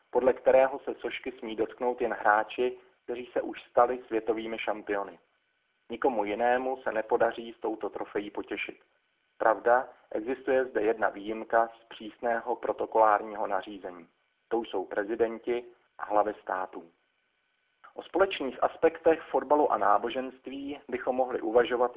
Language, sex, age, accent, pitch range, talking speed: Czech, male, 40-59, native, 110-130 Hz, 125 wpm